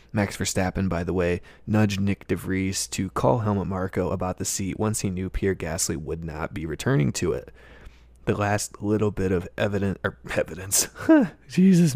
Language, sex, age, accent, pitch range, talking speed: English, male, 20-39, American, 95-105 Hz, 175 wpm